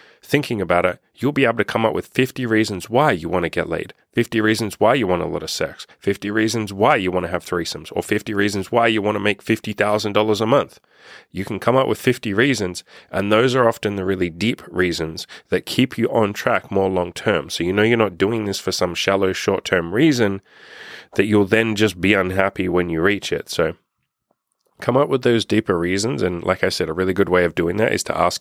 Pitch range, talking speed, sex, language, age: 90-110 Hz, 235 wpm, male, English, 30-49